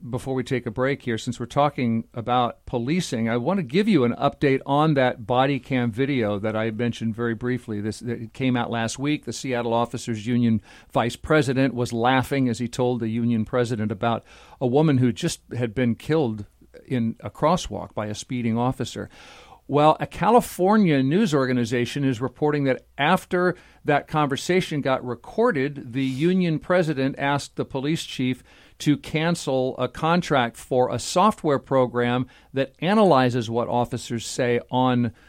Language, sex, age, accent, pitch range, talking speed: English, male, 50-69, American, 120-145 Hz, 165 wpm